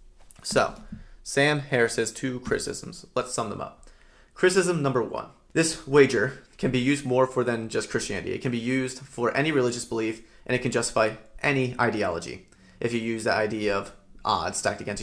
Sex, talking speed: male, 185 wpm